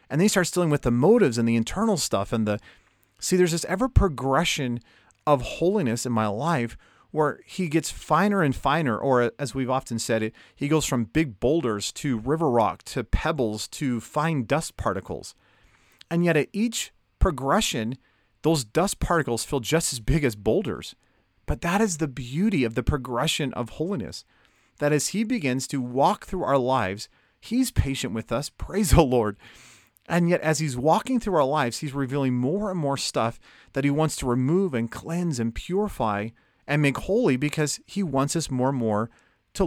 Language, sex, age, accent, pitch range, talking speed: English, male, 40-59, American, 120-170 Hz, 190 wpm